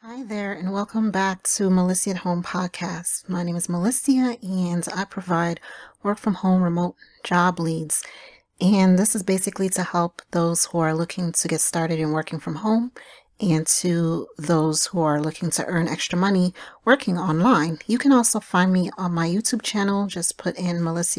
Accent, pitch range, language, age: American, 175-210 Hz, English, 40-59